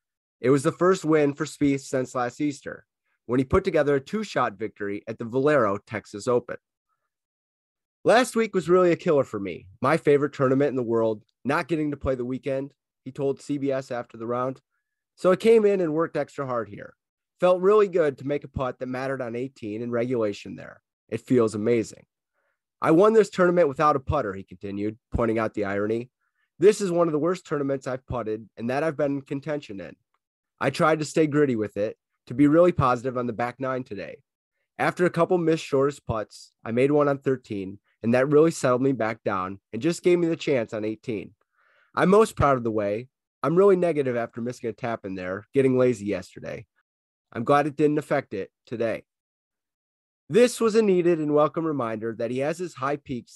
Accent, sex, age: American, male, 30-49